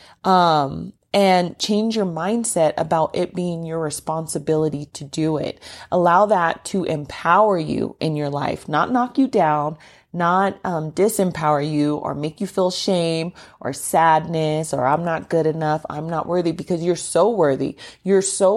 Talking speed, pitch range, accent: 160 wpm, 155-185 Hz, American